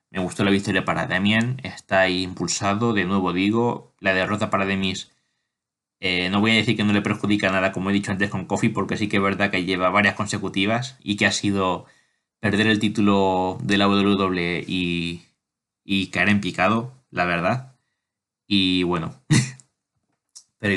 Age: 20-39